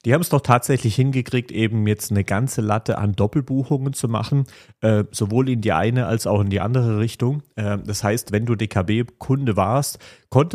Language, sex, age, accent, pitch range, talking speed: German, male, 30-49, German, 100-120 Hz, 180 wpm